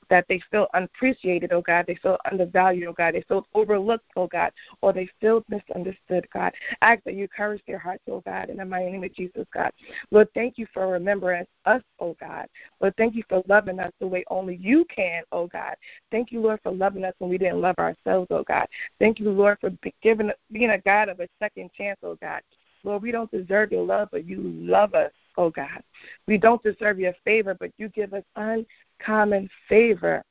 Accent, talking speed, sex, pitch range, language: American, 215 wpm, female, 180-215 Hz, English